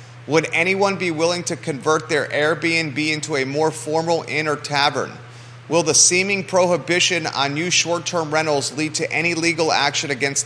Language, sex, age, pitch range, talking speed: English, male, 30-49, 125-160 Hz, 165 wpm